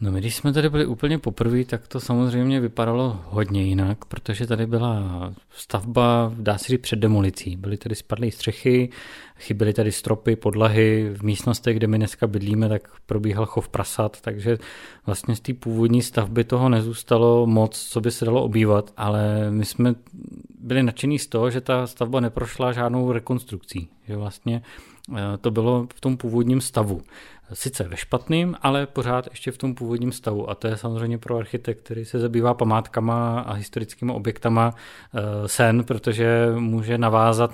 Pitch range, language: 110-125 Hz, Czech